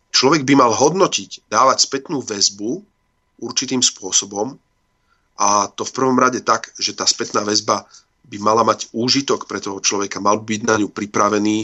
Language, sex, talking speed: Slovak, male, 165 wpm